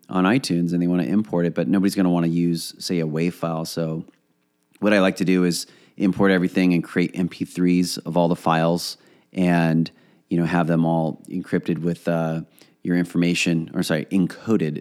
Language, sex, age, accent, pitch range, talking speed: English, male, 30-49, American, 85-95 Hz, 200 wpm